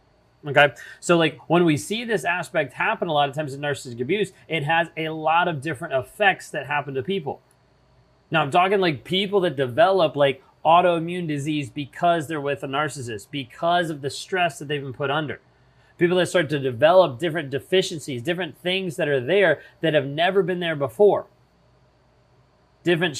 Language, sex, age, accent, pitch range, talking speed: English, male, 30-49, American, 140-175 Hz, 180 wpm